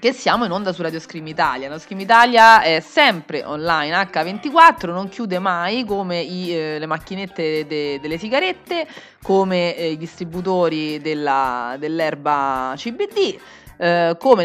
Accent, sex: native, female